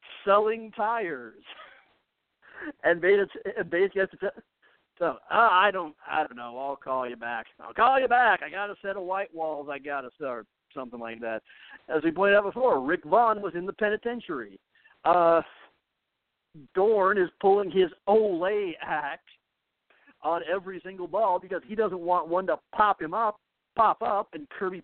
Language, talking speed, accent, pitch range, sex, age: English, 170 wpm, American, 165-235 Hz, male, 50-69